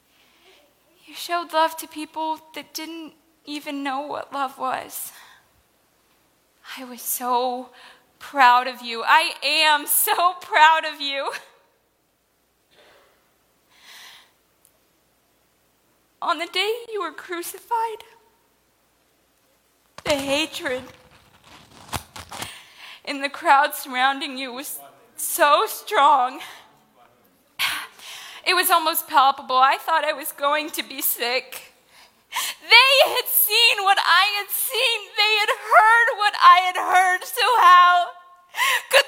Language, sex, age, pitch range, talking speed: English, female, 20-39, 295-390 Hz, 105 wpm